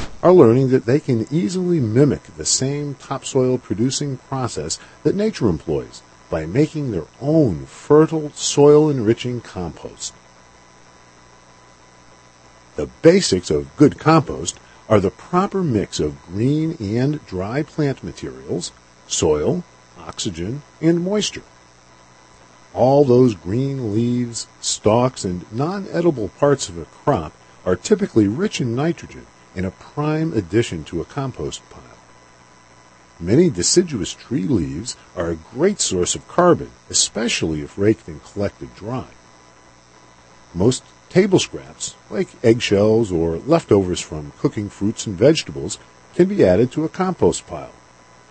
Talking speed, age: 125 wpm, 50-69